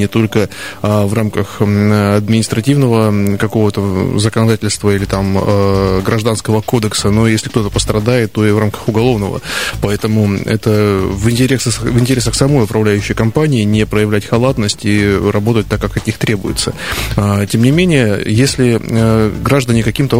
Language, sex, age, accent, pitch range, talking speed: Russian, male, 20-39, native, 105-125 Hz, 130 wpm